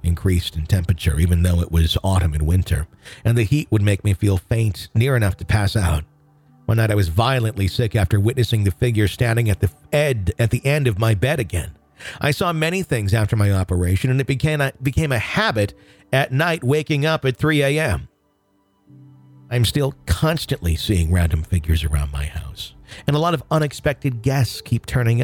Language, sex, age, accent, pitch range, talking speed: English, male, 50-69, American, 90-125 Hz, 195 wpm